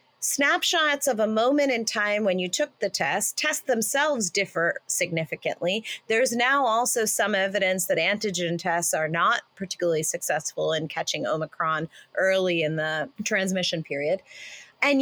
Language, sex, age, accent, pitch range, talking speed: English, female, 30-49, American, 185-270 Hz, 145 wpm